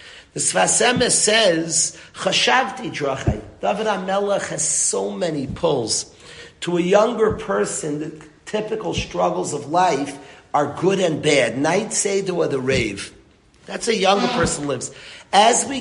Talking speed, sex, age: 135 wpm, male, 40-59